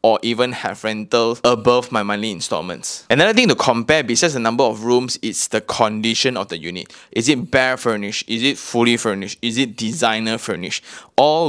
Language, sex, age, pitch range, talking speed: English, male, 20-39, 110-130 Hz, 190 wpm